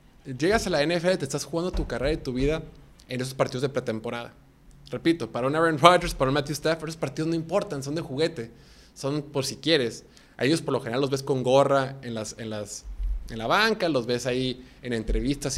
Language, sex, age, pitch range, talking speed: Spanish, male, 20-39, 120-155 Hz, 225 wpm